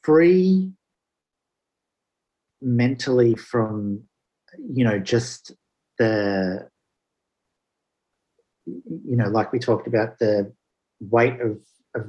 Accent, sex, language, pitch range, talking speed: Australian, male, English, 100-130 Hz, 85 wpm